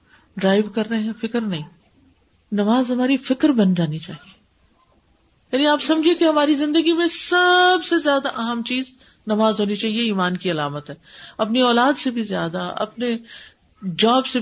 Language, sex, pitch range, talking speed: Urdu, female, 190-275 Hz, 160 wpm